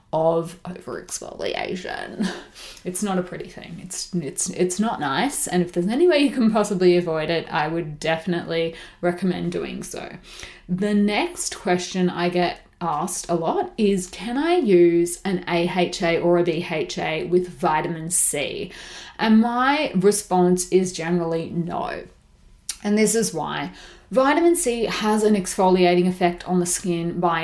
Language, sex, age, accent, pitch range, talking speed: English, female, 30-49, Australian, 175-215 Hz, 150 wpm